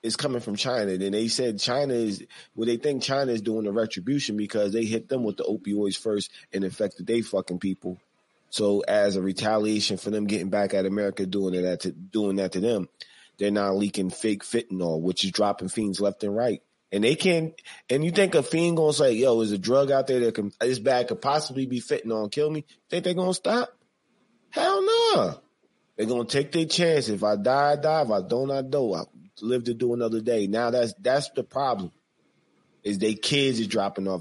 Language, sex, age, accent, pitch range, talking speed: English, male, 30-49, American, 100-140 Hz, 215 wpm